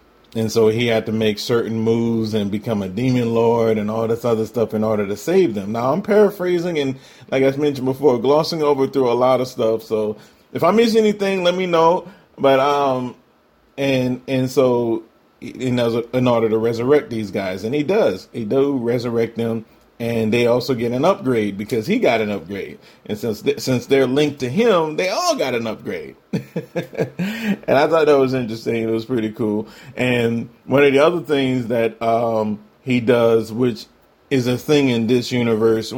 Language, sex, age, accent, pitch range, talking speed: English, male, 30-49, American, 115-140 Hz, 190 wpm